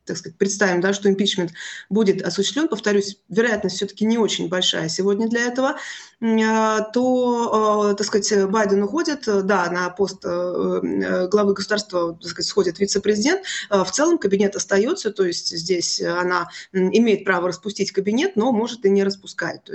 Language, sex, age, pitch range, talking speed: Russian, female, 20-39, 185-215 Hz, 150 wpm